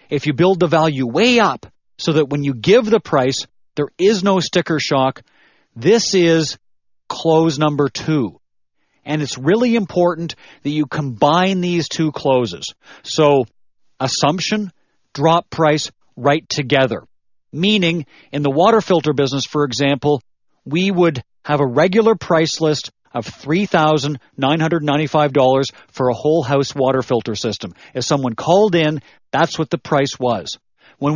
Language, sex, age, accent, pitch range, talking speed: English, male, 40-59, American, 135-175 Hz, 145 wpm